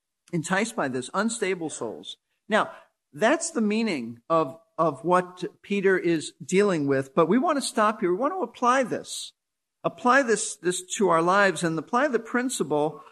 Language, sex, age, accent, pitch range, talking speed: English, male, 50-69, American, 160-225 Hz, 170 wpm